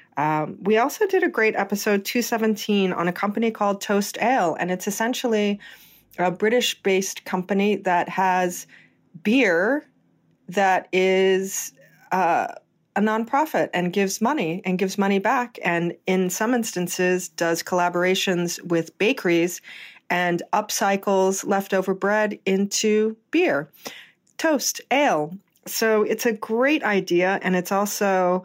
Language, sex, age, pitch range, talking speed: English, female, 40-59, 165-200 Hz, 125 wpm